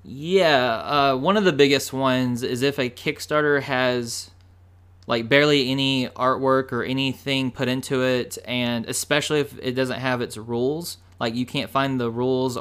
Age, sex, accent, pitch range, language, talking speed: 20-39, male, American, 115-130 Hz, English, 165 wpm